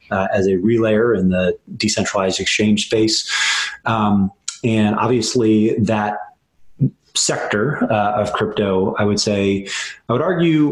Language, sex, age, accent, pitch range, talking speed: English, male, 30-49, American, 95-110 Hz, 130 wpm